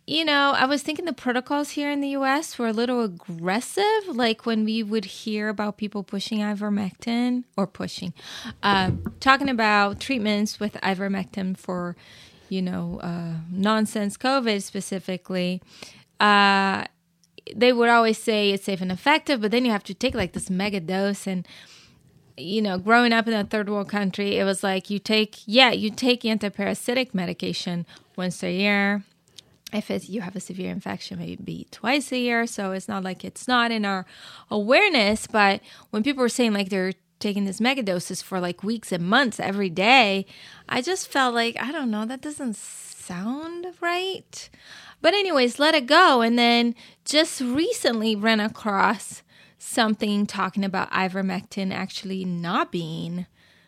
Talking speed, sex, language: 165 wpm, female, English